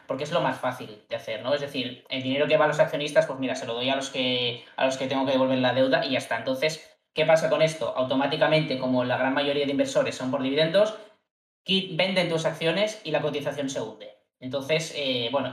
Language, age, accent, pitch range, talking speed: Spanish, 20-39, Spanish, 130-160 Hz, 245 wpm